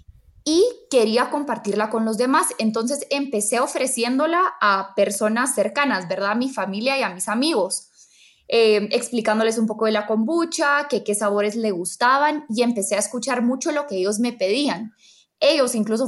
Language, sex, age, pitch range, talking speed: Spanish, female, 20-39, 215-275 Hz, 165 wpm